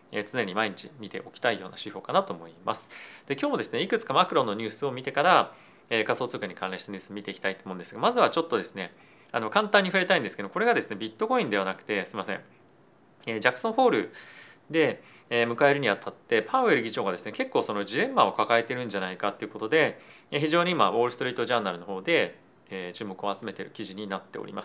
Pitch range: 105-155 Hz